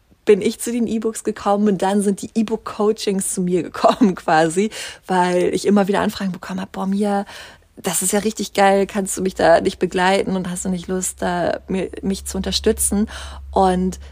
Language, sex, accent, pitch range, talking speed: German, female, German, 180-220 Hz, 195 wpm